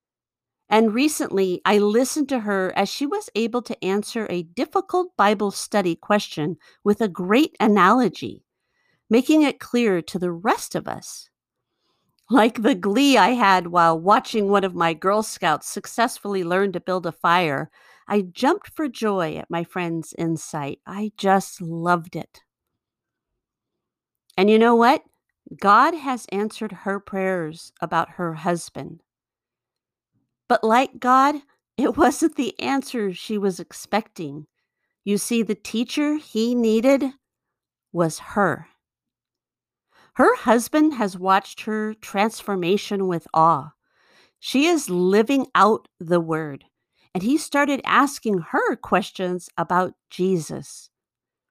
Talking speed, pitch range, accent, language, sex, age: 130 wpm, 175-245 Hz, American, English, female, 50-69